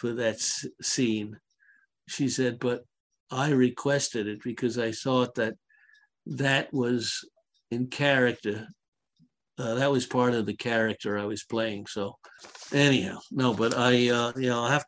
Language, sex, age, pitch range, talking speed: English, male, 60-79, 115-140 Hz, 150 wpm